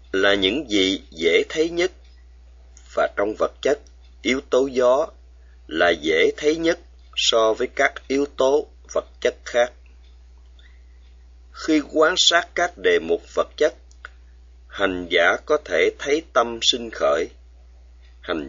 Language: Vietnamese